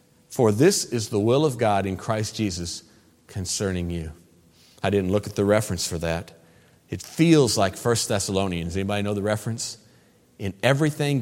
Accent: American